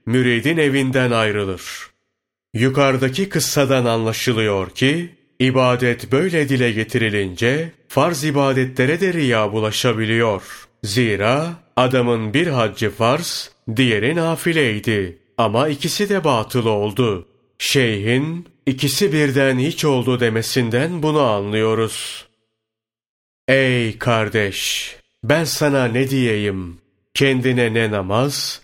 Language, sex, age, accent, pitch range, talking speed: Turkish, male, 40-59, native, 115-140 Hz, 90 wpm